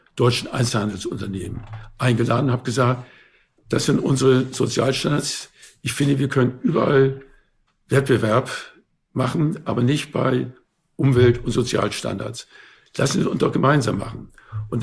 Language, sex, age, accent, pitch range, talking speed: German, male, 60-79, German, 115-140 Hz, 125 wpm